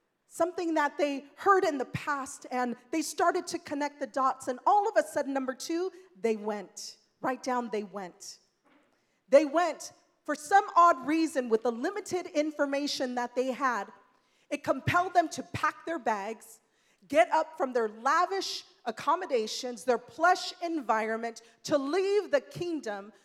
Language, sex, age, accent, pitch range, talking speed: English, female, 30-49, American, 245-335 Hz, 155 wpm